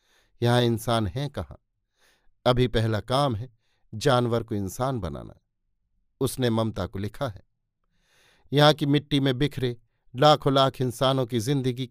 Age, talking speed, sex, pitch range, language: 50-69, 135 wpm, male, 115-135 Hz, Hindi